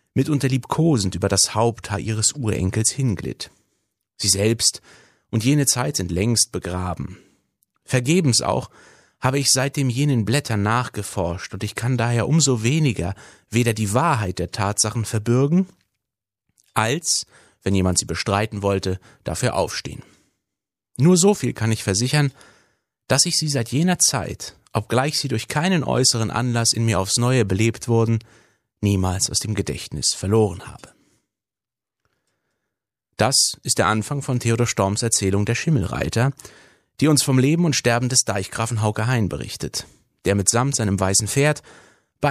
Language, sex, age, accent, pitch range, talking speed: German, male, 30-49, German, 100-130 Hz, 145 wpm